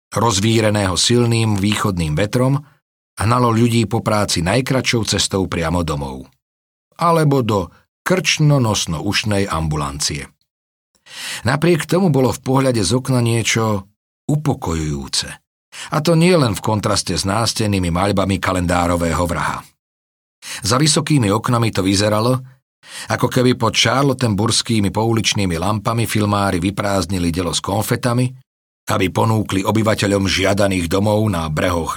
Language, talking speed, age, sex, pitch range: Slovak, 110 wpm, 40-59, male, 90-115 Hz